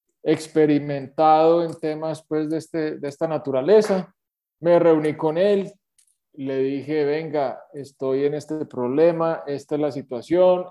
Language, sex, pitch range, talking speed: Spanish, male, 140-170 Hz, 135 wpm